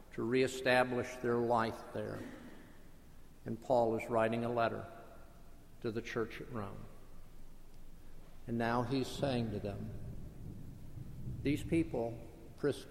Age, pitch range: 50-69, 115-135 Hz